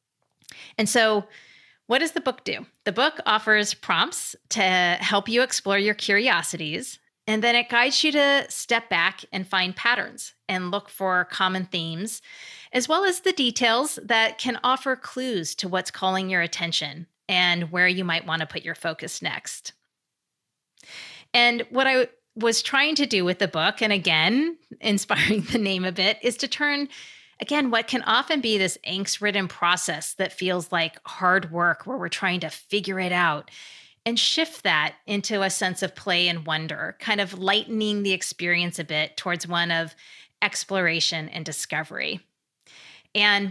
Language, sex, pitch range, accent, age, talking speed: English, female, 175-230 Hz, American, 30-49, 170 wpm